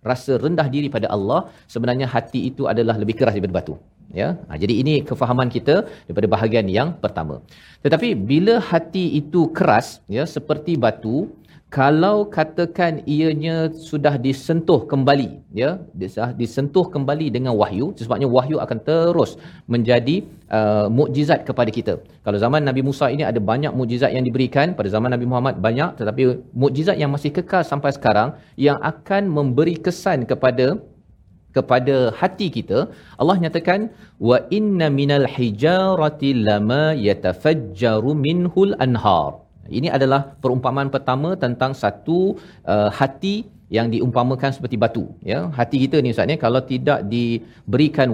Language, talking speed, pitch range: Malayalam, 140 wpm, 120-155 Hz